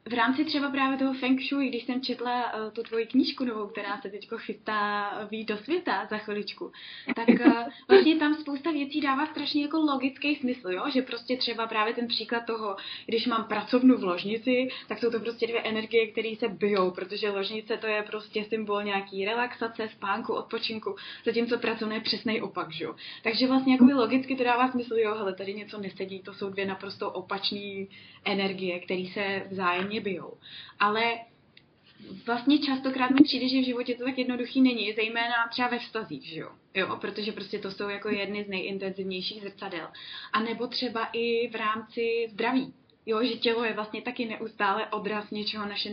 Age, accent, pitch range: 20-39, native, 205-245 Hz